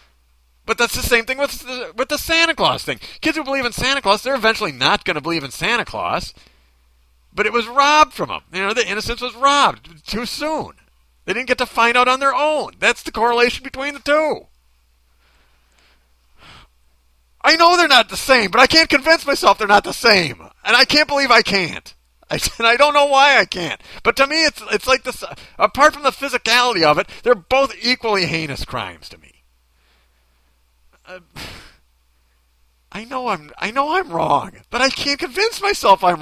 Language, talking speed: English, 195 wpm